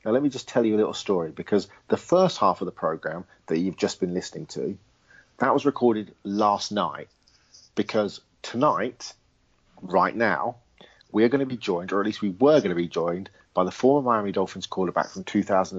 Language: English